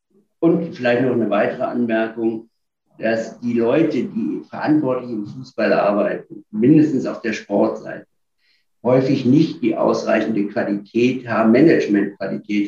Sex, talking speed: male, 120 wpm